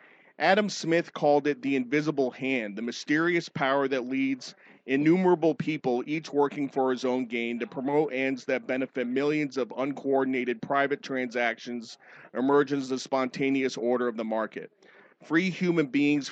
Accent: American